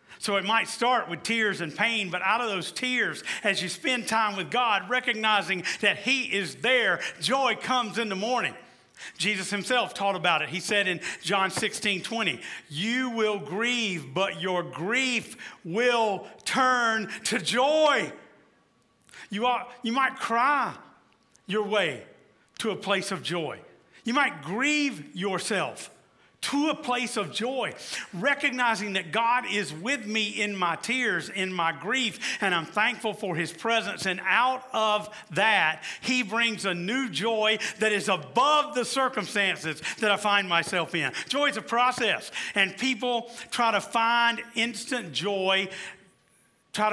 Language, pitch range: English, 190-240 Hz